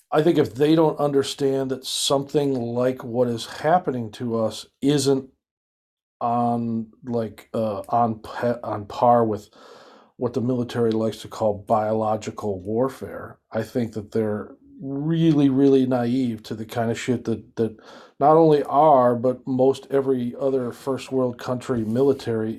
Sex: male